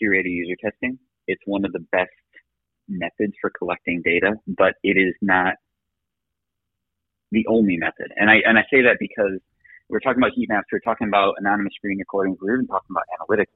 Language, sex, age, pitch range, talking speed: English, male, 30-49, 90-110 Hz, 185 wpm